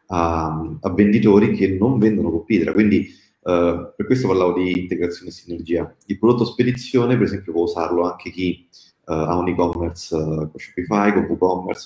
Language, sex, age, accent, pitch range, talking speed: Italian, male, 30-49, native, 85-100 Hz, 170 wpm